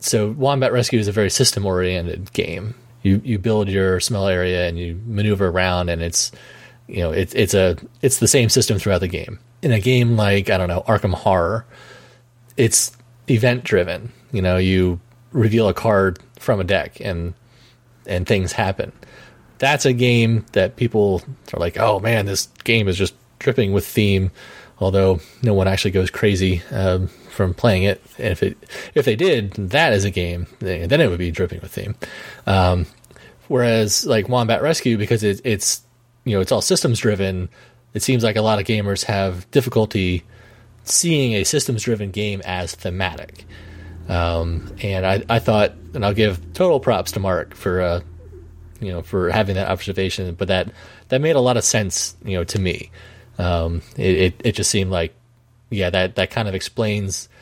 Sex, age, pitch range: male, 30-49, 95-115 Hz